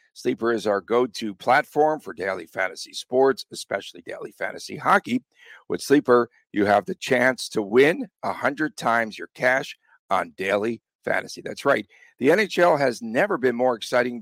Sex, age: male, 50-69